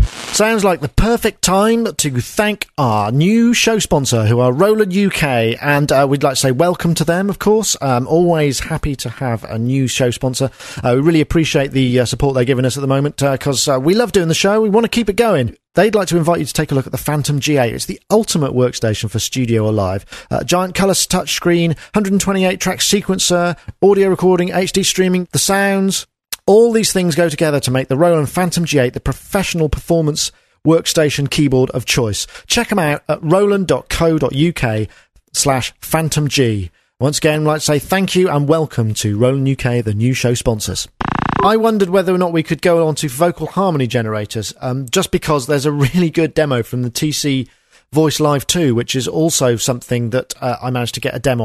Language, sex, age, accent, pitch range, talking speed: English, male, 40-59, British, 130-175 Hz, 205 wpm